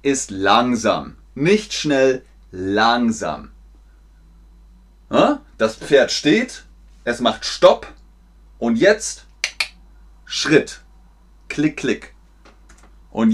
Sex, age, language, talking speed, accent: male, 30-49, German, 75 wpm, German